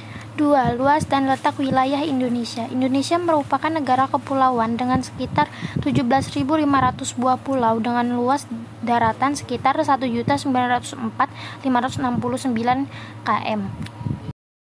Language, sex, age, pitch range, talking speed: Indonesian, female, 20-39, 245-290 Hz, 90 wpm